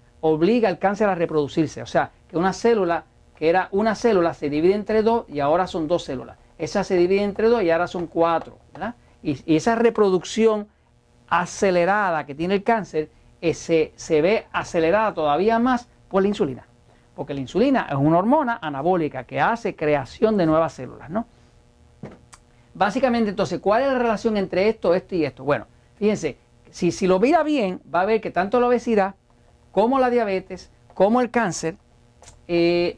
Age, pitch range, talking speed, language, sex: 50-69, 155-225 Hz, 175 wpm, Spanish, male